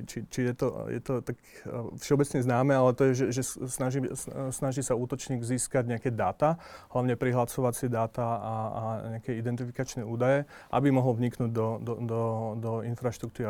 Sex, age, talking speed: male, 30-49, 165 wpm